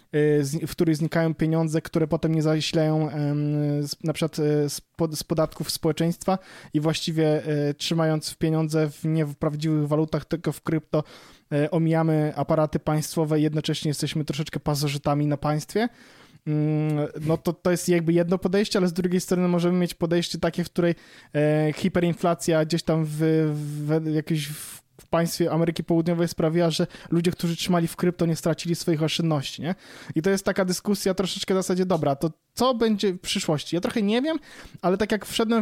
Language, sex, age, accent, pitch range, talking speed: Polish, male, 20-39, native, 155-180 Hz, 160 wpm